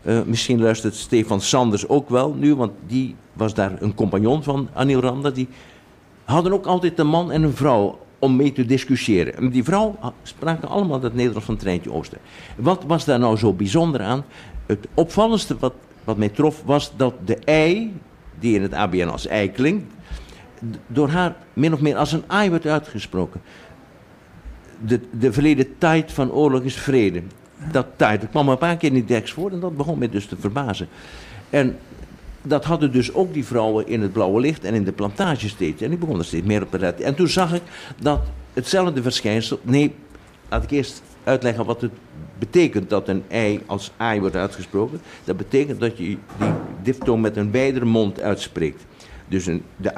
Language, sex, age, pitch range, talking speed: Dutch, male, 60-79, 105-145 Hz, 195 wpm